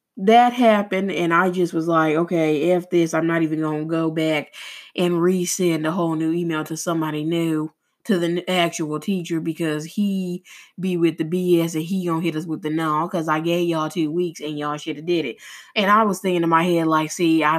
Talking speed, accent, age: 230 wpm, American, 20-39